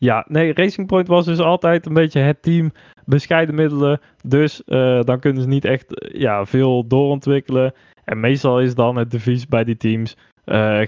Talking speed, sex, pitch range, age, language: 180 wpm, male, 125-165 Hz, 20-39, Dutch